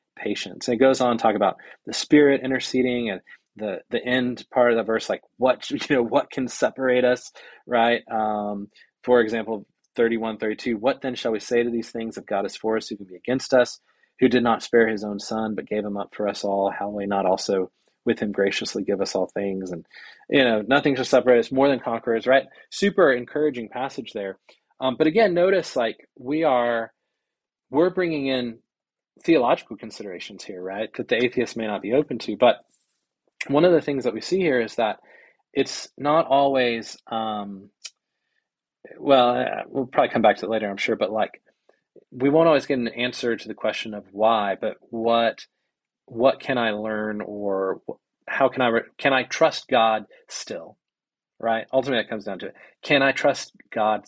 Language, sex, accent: English, male, American